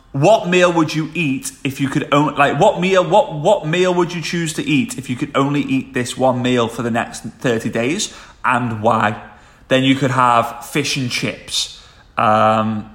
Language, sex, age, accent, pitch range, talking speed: English, male, 30-49, British, 115-160 Hz, 200 wpm